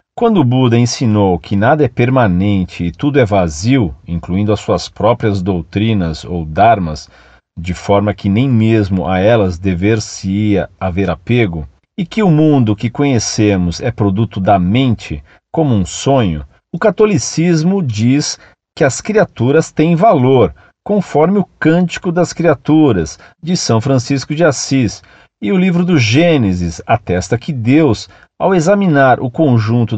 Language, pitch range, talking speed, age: Portuguese, 100-165 Hz, 145 wpm, 40-59